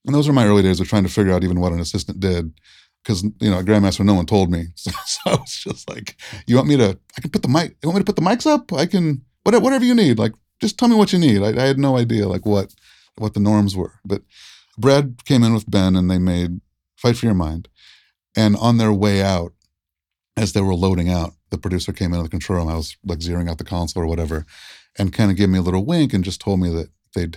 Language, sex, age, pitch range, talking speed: English, male, 30-49, 90-115 Hz, 270 wpm